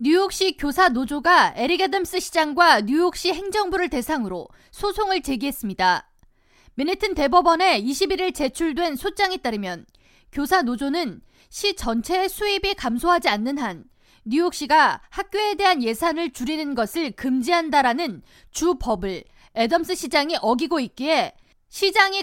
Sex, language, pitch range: female, Korean, 265-365 Hz